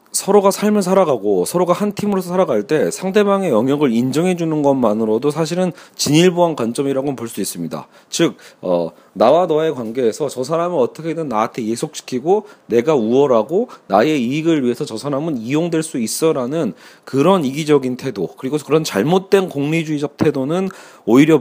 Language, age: Korean, 40-59